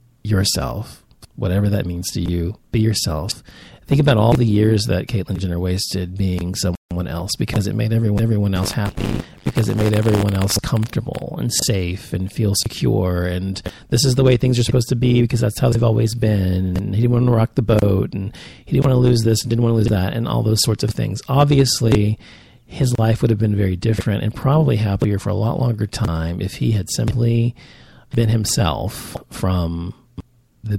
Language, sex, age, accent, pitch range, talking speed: English, male, 40-59, American, 100-120 Hz, 205 wpm